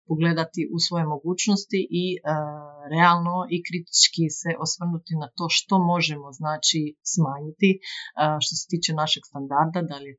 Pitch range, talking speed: 155-180 Hz, 155 wpm